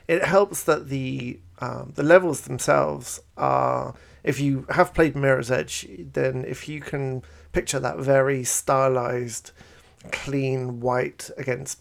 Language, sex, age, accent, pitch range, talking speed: English, male, 40-59, British, 120-145 Hz, 130 wpm